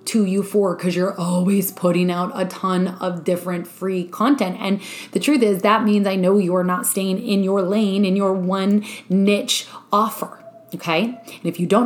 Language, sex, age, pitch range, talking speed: English, female, 20-39, 190-250 Hz, 195 wpm